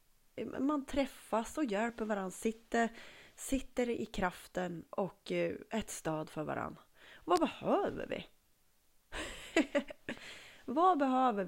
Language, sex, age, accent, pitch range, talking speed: Swedish, female, 30-49, native, 180-255 Hz, 100 wpm